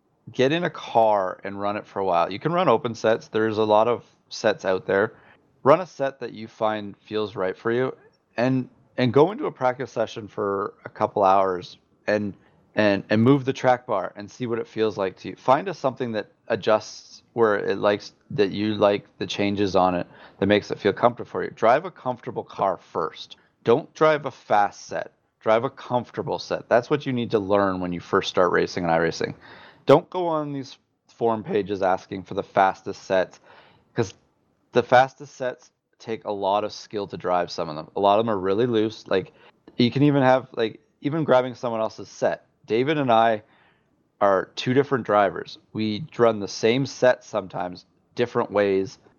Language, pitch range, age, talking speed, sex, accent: English, 100-125 Hz, 30-49, 200 wpm, male, American